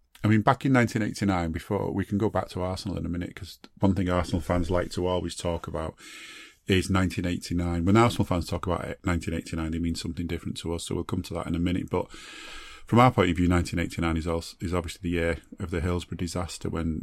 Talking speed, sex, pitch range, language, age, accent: 235 wpm, male, 85-100 Hz, English, 30-49, British